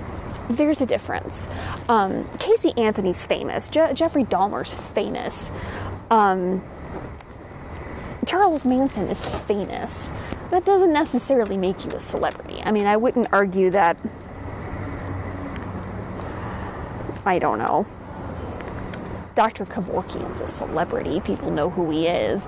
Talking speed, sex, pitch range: 110 wpm, female, 180-250 Hz